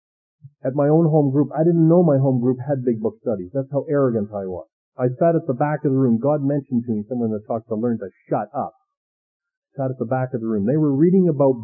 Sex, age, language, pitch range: male, 50-69, English, 135-185 Hz